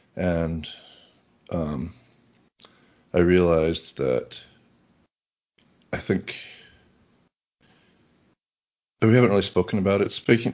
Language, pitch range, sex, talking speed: English, 85-105 Hz, male, 80 wpm